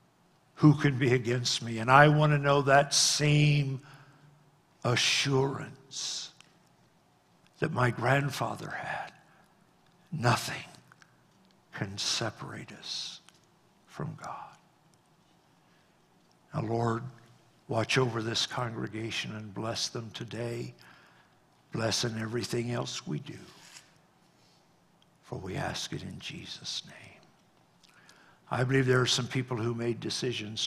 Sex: male